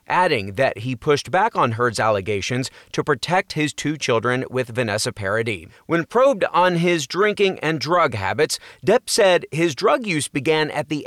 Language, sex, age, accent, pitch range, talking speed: English, male, 30-49, American, 125-155 Hz, 175 wpm